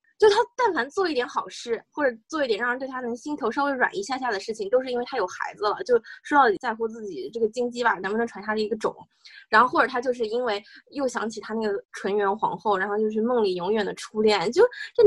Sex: female